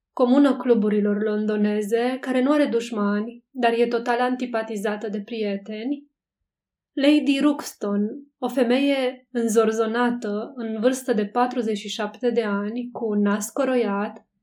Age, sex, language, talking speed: 20-39, female, Romanian, 110 wpm